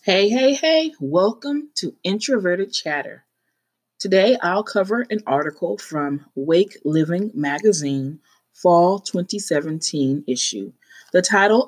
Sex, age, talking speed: female, 30-49, 110 wpm